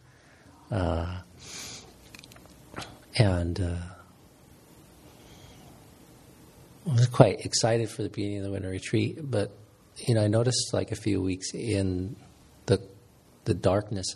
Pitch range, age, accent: 90-110 Hz, 50-69, American